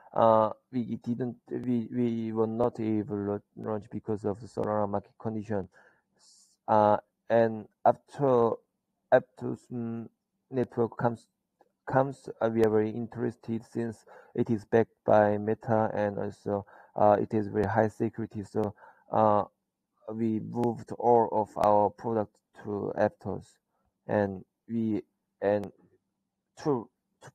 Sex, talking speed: male, 125 wpm